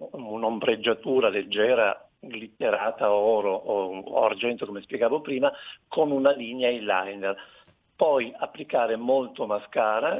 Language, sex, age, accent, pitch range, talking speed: Italian, male, 50-69, native, 105-165 Hz, 100 wpm